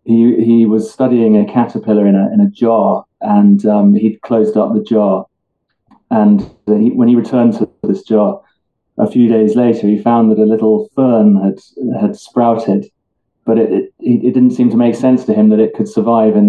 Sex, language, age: male, English, 30-49